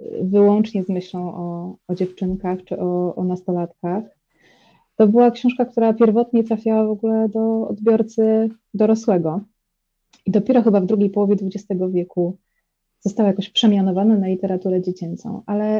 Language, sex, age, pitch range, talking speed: Polish, female, 20-39, 195-225 Hz, 135 wpm